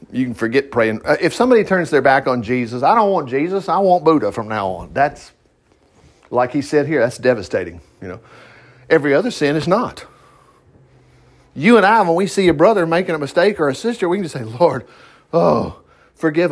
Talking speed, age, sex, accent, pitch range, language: 205 wpm, 50-69, male, American, 135-205 Hz, English